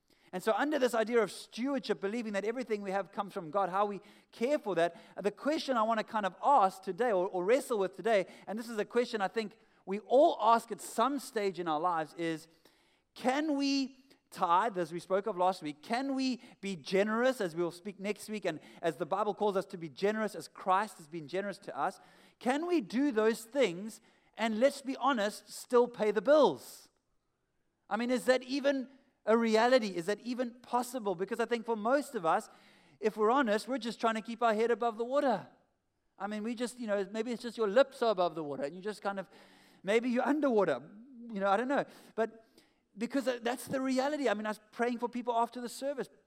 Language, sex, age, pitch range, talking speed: English, male, 30-49, 195-250 Hz, 225 wpm